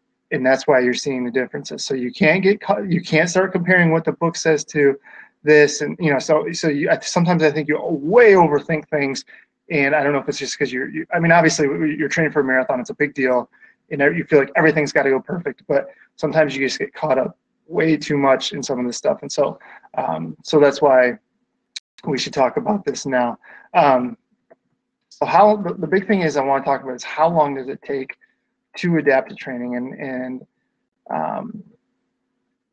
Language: English